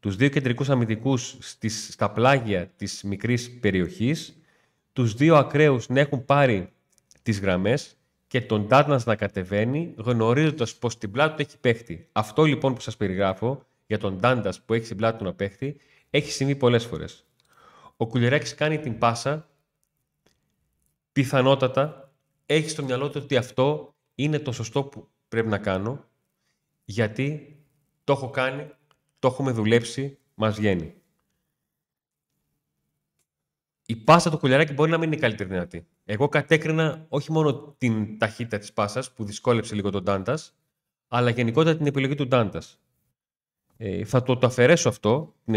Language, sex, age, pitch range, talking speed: Greek, male, 30-49, 110-145 Hz, 150 wpm